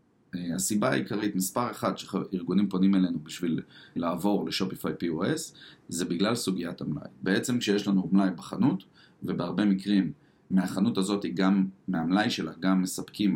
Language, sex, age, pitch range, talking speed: Hebrew, male, 30-49, 95-120 Hz, 130 wpm